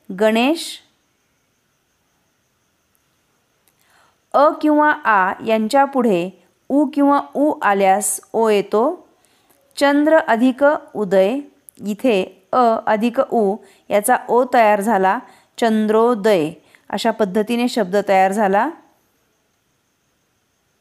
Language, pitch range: Marathi, 210-270 Hz